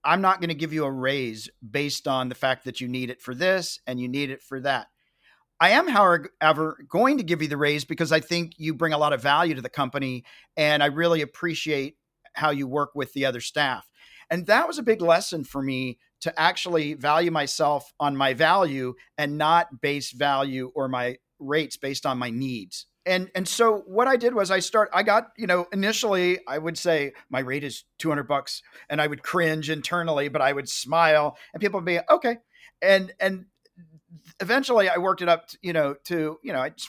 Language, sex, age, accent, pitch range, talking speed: English, male, 40-59, American, 140-185 Hz, 215 wpm